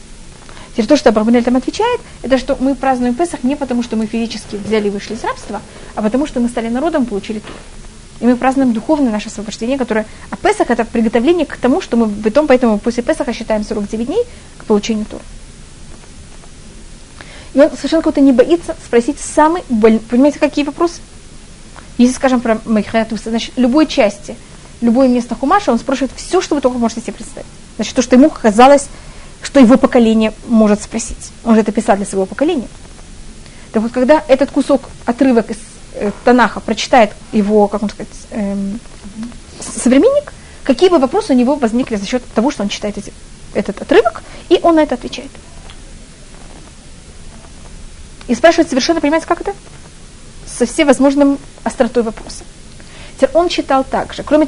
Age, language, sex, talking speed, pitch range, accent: 30-49, Russian, female, 170 wpm, 215-275 Hz, native